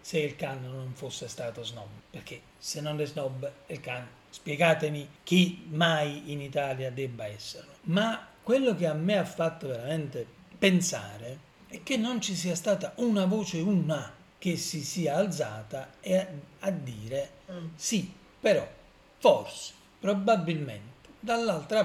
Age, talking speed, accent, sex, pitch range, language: 40-59, 135 wpm, native, male, 130-185 Hz, Italian